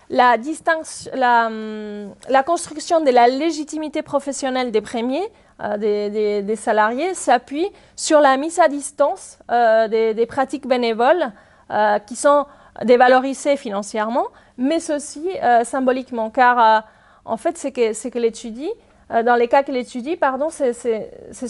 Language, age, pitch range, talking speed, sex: French, 30-49, 230-300 Hz, 140 wpm, female